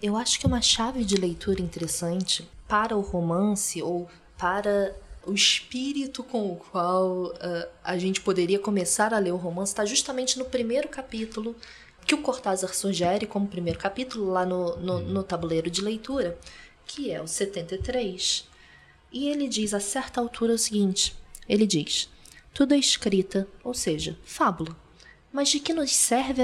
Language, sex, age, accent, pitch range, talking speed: Portuguese, female, 20-39, Brazilian, 175-230 Hz, 155 wpm